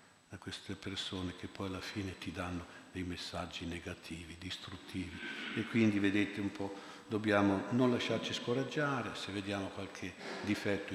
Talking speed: 145 wpm